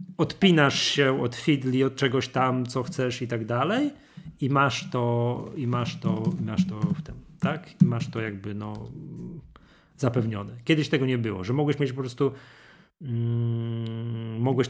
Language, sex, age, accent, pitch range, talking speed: Polish, male, 30-49, native, 115-160 Hz, 165 wpm